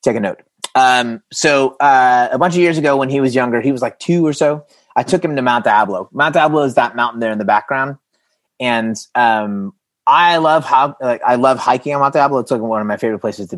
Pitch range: 115-155 Hz